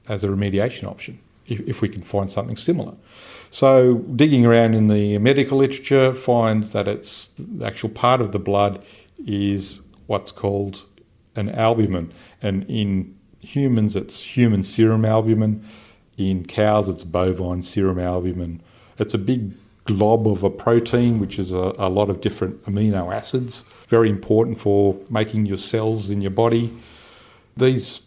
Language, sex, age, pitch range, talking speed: English, male, 50-69, 95-115 Hz, 150 wpm